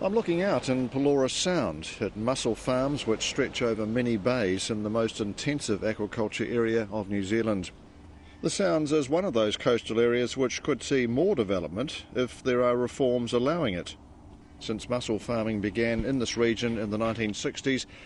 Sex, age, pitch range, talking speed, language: male, 50-69, 110-135 Hz, 175 wpm, English